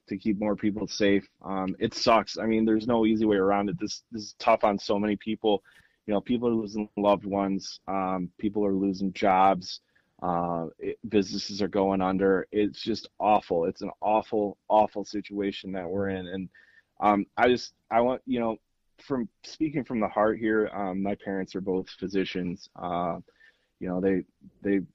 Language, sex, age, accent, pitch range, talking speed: English, male, 20-39, American, 95-105 Hz, 190 wpm